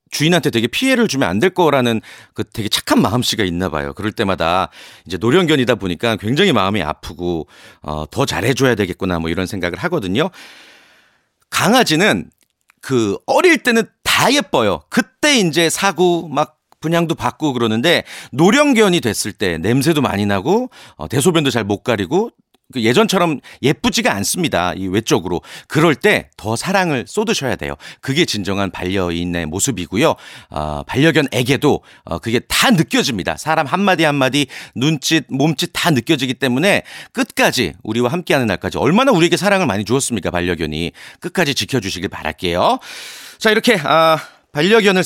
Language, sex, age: Korean, male, 40-59